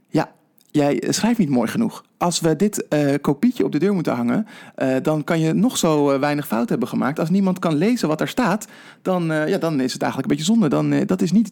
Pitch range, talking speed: 135-190 Hz, 250 wpm